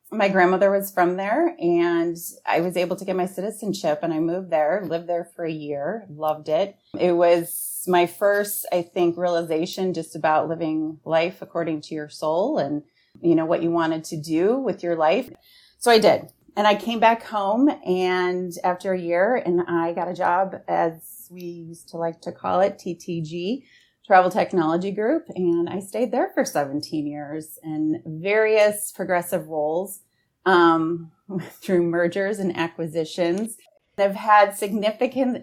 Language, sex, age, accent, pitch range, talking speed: English, female, 30-49, American, 155-190 Hz, 165 wpm